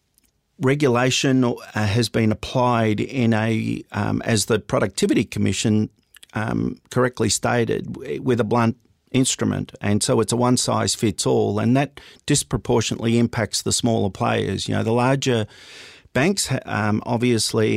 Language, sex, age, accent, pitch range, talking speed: English, male, 40-59, Australian, 105-120 Hz, 135 wpm